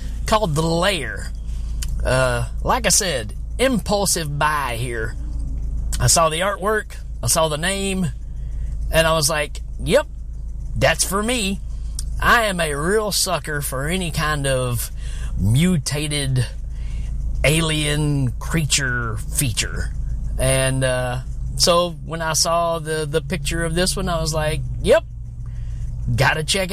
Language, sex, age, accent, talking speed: English, male, 40-59, American, 130 wpm